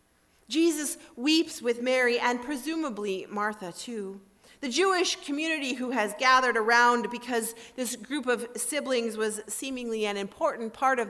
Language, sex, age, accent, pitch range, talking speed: English, female, 40-59, American, 215-275 Hz, 140 wpm